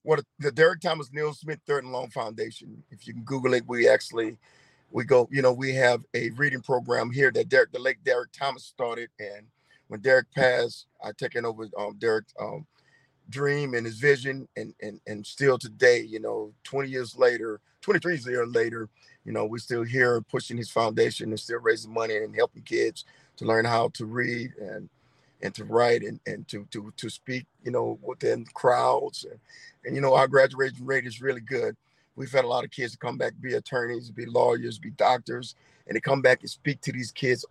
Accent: American